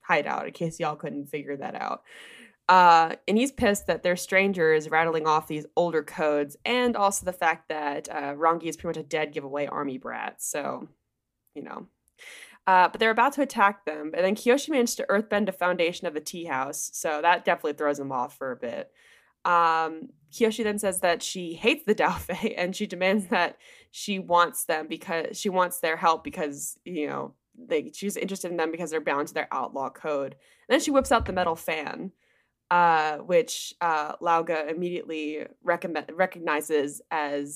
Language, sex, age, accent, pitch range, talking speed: English, female, 20-39, American, 150-200 Hz, 190 wpm